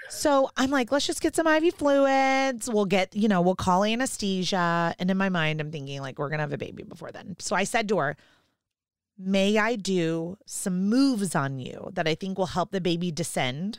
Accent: American